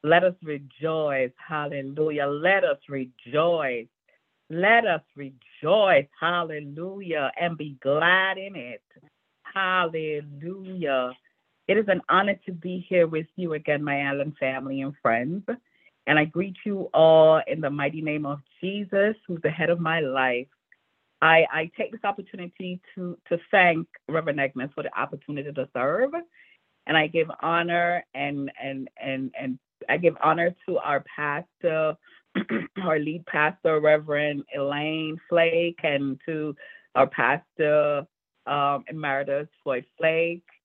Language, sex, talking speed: English, female, 135 wpm